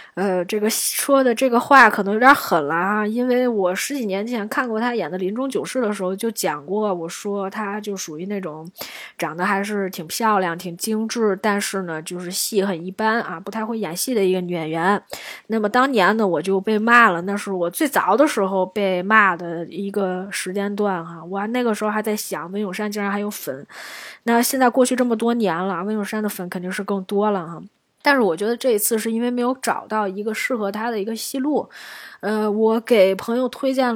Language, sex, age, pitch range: Chinese, female, 20-39, 190-245 Hz